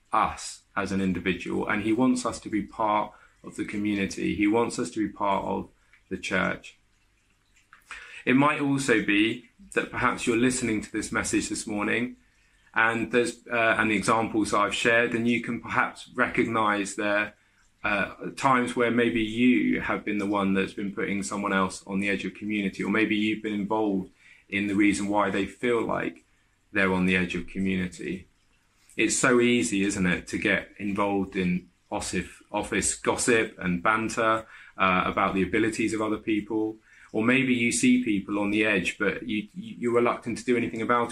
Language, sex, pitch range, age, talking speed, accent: English, male, 100-115 Hz, 20-39, 180 wpm, British